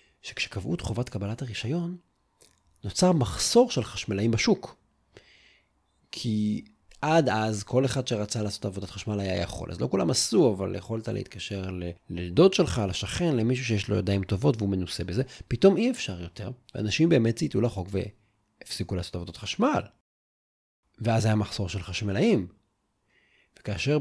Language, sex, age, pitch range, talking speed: Hebrew, male, 30-49, 100-140 Hz, 140 wpm